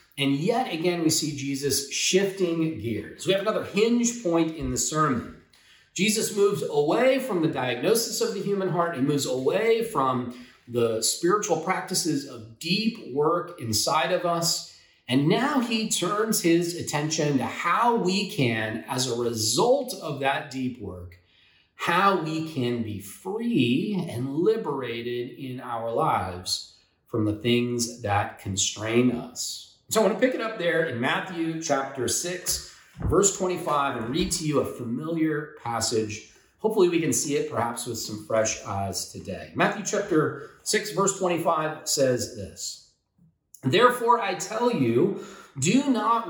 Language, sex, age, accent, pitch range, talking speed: English, male, 40-59, American, 120-190 Hz, 150 wpm